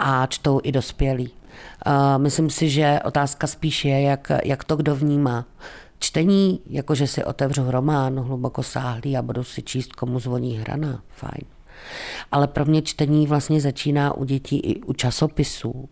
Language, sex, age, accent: Czech, female, 50-69, native